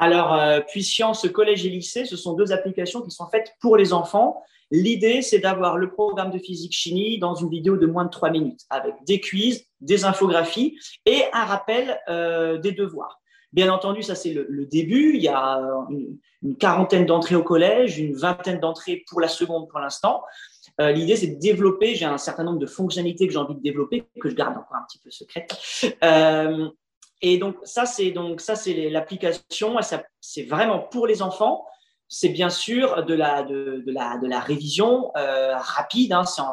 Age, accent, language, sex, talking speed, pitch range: 30-49, French, French, male, 195 wpm, 165-230 Hz